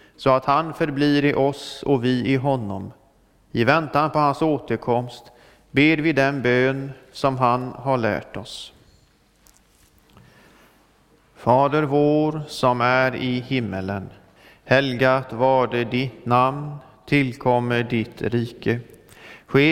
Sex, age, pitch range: male, 40-59, 120-140 Hz